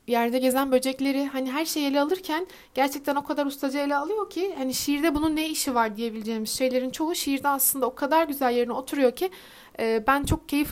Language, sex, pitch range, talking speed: Turkish, female, 235-295 Hz, 200 wpm